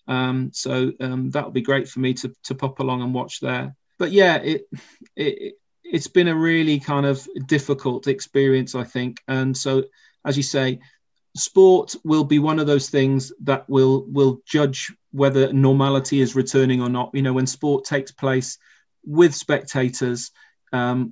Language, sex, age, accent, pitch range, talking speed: English, male, 30-49, British, 130-145 Hz, 175 wpm